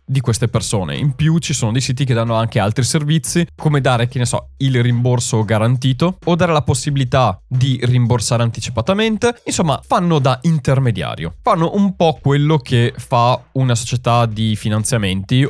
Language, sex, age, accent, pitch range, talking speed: Italian, male, 20-39, native, 115-155 Hz, 165 wpm